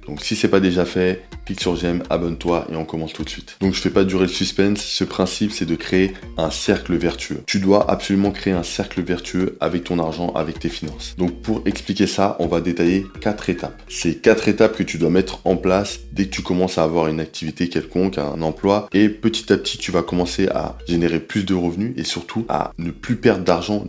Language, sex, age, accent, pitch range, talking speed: French, male, 20-39, French, 85-95 Hz, 235 wpm